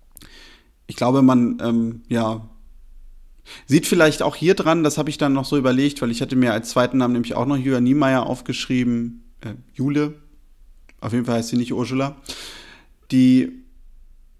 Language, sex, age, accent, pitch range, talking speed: German, male, 30-49, German, 125-150 Hz, 165 wpm